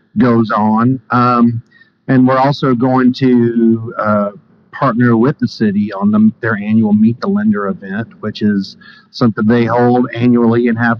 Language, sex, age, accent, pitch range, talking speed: English, male, 50-69, American, 115-130 Hz, 160 wpm